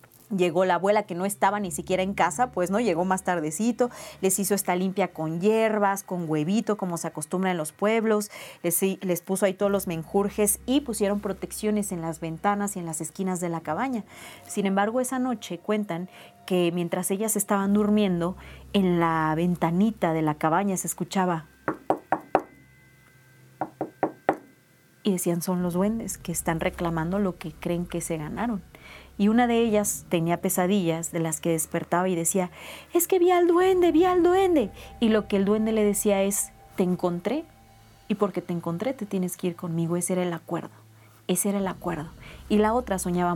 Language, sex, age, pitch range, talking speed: Spanish, female, 30-49, 170-205 Hz, 185 wpm